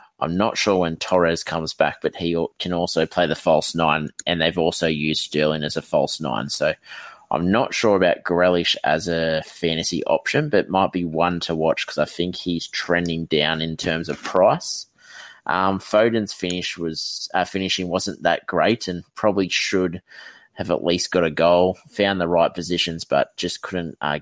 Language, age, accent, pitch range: English, 20-39, Australian, 80-95 Hz